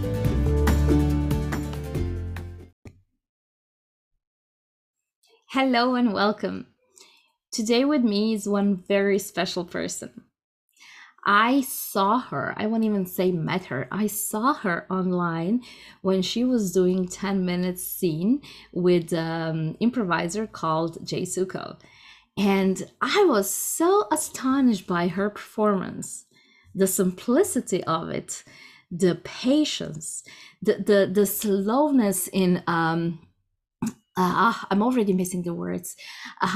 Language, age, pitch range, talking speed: English, 20-39, 175-230 Hz, 105 wpm